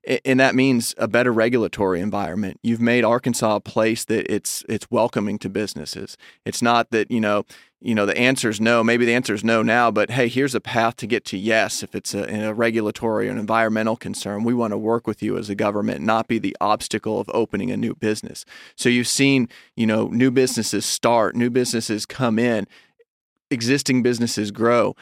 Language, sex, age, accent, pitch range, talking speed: English, male, 30-49, American, 110-125 Hz, 205 wpm